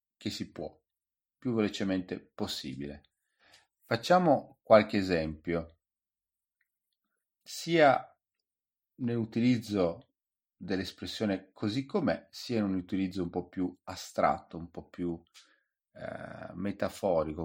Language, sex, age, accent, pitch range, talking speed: Italian, male, 40-59, native, 80-100 Hz, 95 wpm